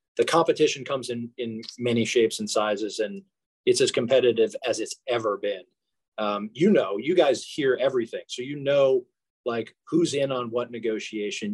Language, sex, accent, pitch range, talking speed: English, male, American, 110-140 Hz, 170 wpm